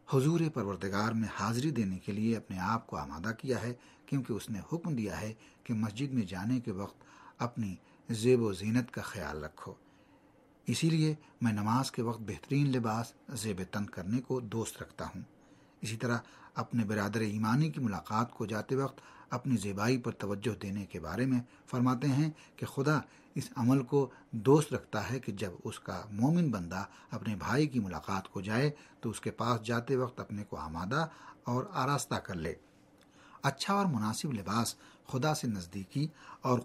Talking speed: 175 wpm